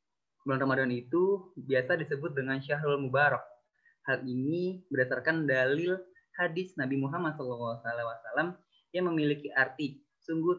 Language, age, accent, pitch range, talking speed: Indonesian, 20-39, native, 130-155 Hz, 115 wpm